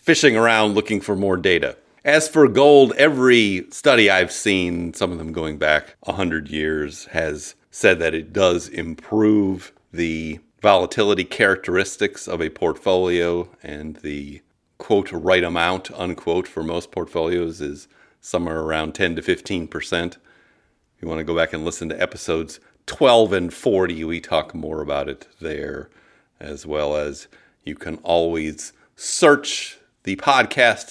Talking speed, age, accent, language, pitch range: 145 wpm, 40-59, American, English, 80-100 Hz